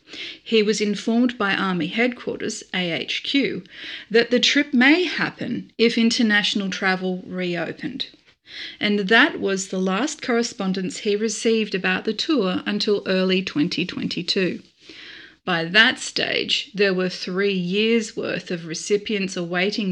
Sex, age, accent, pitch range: female, 40-59, Australian, 190-250 Hz